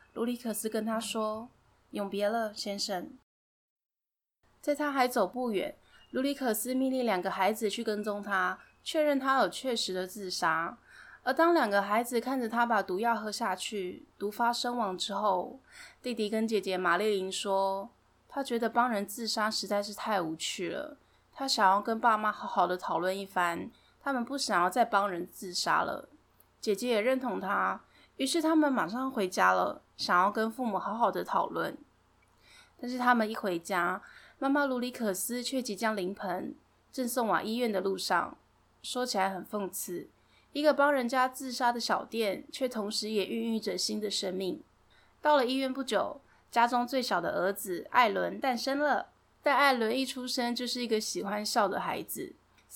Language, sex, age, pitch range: Chinese, female, 10-29, 200-250 Hz